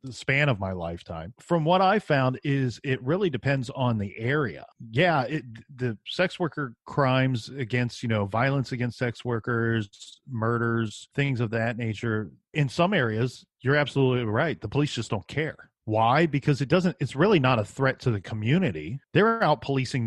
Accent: American